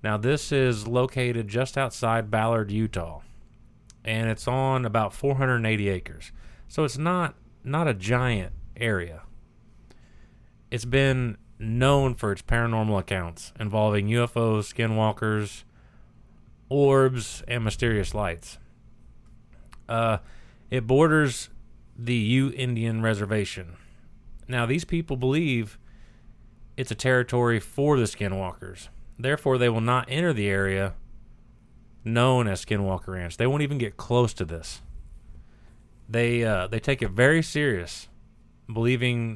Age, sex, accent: 30-49, male, American